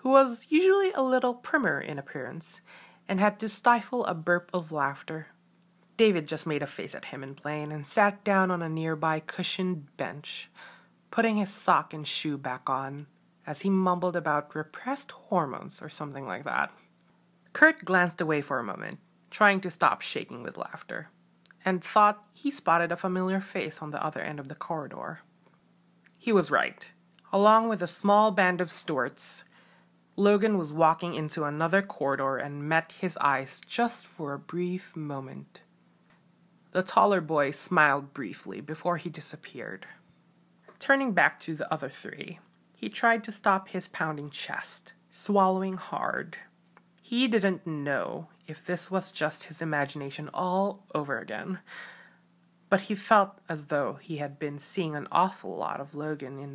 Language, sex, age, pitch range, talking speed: English, female, 20-39, 150-195 Hz, 160 wpm